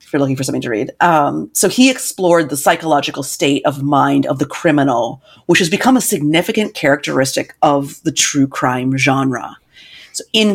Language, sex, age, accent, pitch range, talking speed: English, female, 30-49, American, 150-190 Hz, 180 wpm